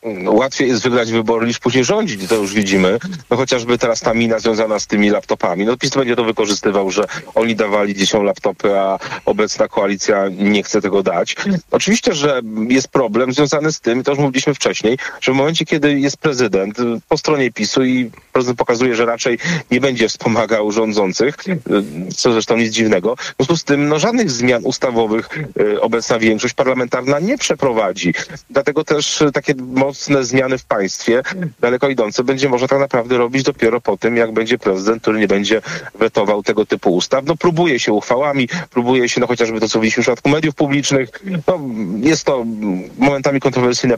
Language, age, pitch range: Polish, 40-59, 110-145 Hz